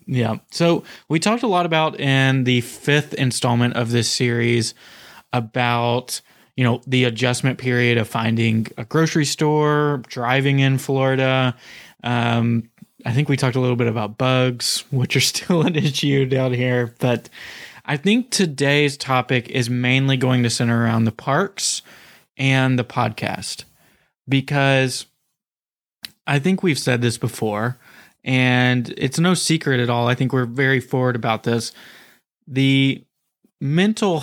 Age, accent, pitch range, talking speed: 20-39, American, 120-140 Hz, 145 wpm